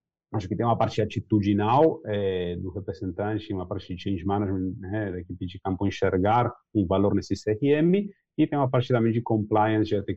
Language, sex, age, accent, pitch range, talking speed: Portuguese, male, 30-49, Brazilian, 90-105 Hz, 200 wpm